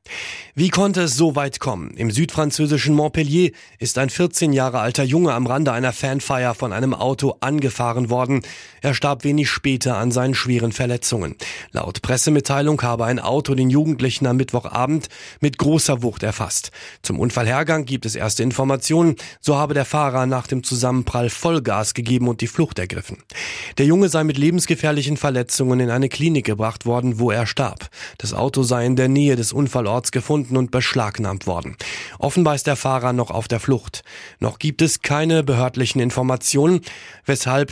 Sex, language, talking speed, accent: male, German, 165 wpm, German